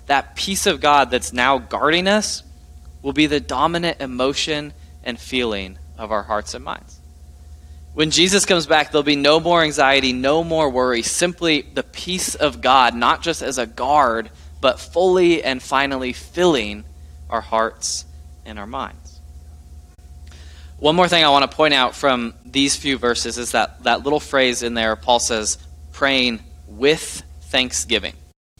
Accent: American